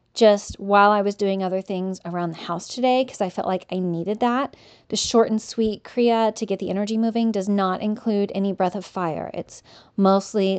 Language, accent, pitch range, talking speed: English, American, 185-230 Hz, 210 wpm